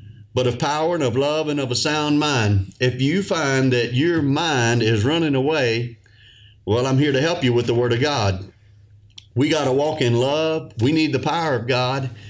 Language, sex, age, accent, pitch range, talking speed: English, male, 40-59, American, 110-150 Hz, 210 wpm